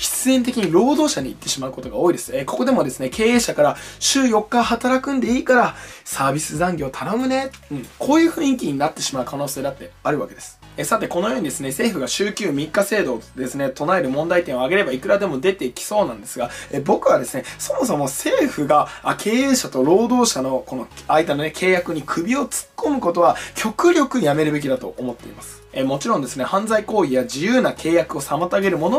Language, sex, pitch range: Japanese, male, 150-255 Hz